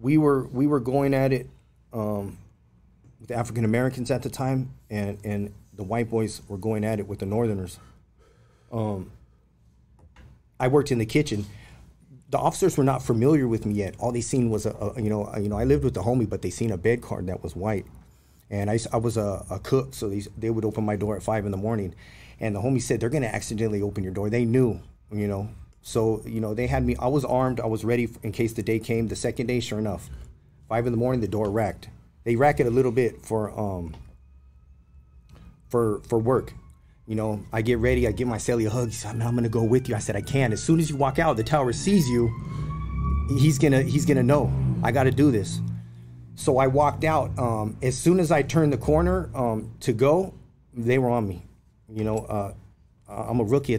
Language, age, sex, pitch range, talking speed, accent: English, 30-49, male, 100-130 Hz, 230 wpm, American